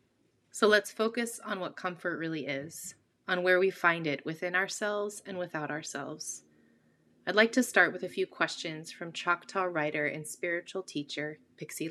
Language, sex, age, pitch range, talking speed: English, female, 30-49, 155-200 Hz, 165 wpm